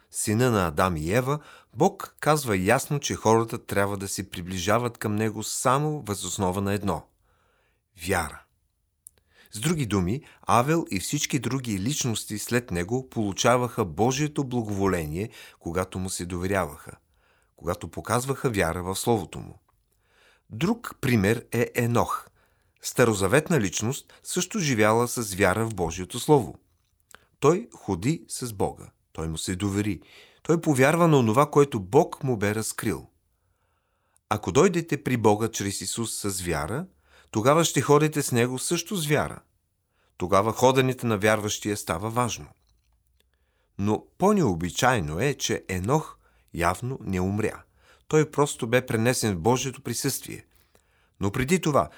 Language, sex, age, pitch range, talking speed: Bulgarian, male, 40-59, 95-130 Hz, 135 wpm